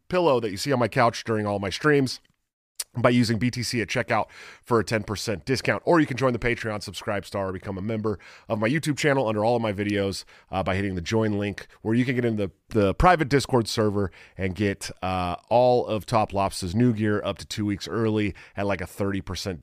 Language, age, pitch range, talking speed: English, 30-49, 95-130 Hz, 230 wpm